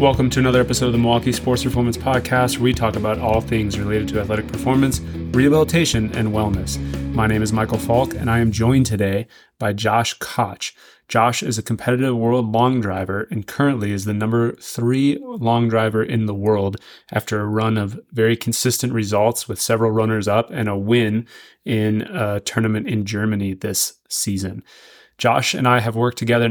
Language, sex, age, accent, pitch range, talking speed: English, male, 20-39, American, 105-120 Hz, 185 wpm